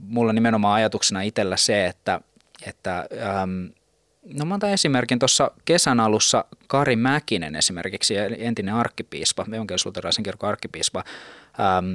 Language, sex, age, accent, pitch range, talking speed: Finnish, male, 20-39, native, 100-140 Hz, 105 wpm